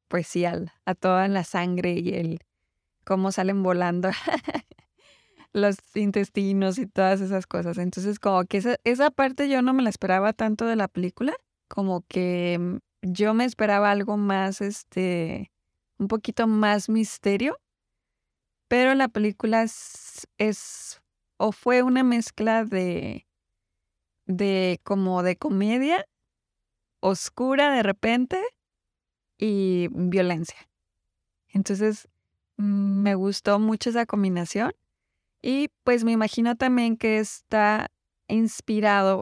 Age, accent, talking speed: 20-39, Mexican, 115 wpm